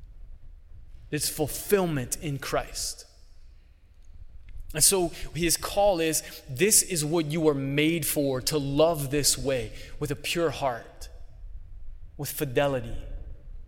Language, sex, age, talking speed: English, male, 20-39, 115 wpm